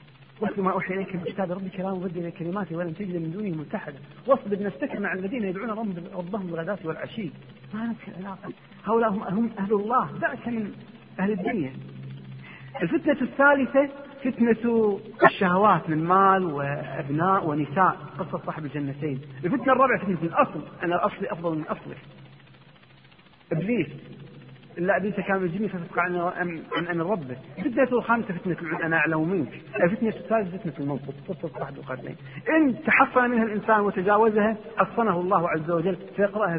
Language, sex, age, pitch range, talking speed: Arabic, male, 40-59, 170-230 Hz, 150 wpm